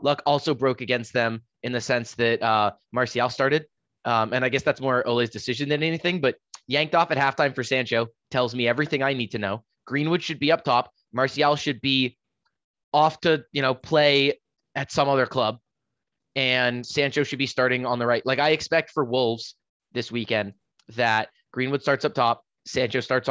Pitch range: 120-145 Hz